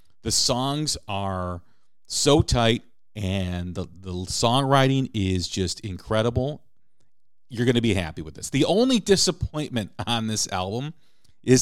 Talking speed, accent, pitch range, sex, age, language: 135 wpm, American, 95-125 Hz, male, 40-59, English